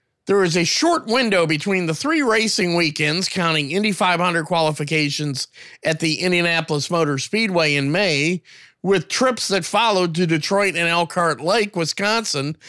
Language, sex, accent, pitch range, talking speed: English, male, American, 150-190 Hz, 145 wpm